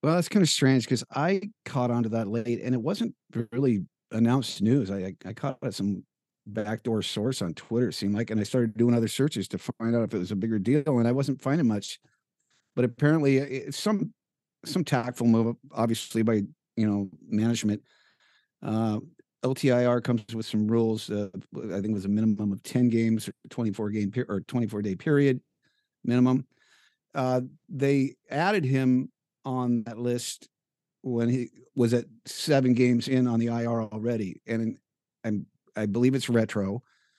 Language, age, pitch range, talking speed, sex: English, 50-69, 110-130 Hz, 180 wpm, male